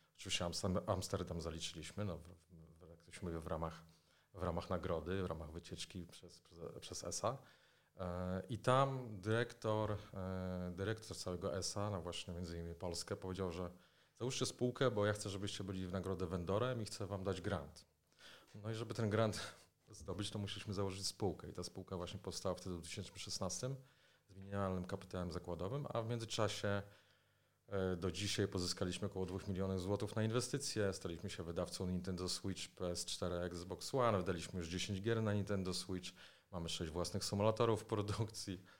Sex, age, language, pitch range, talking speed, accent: male, 30-49, Polish, 90-105 Hz, 155 wpm, native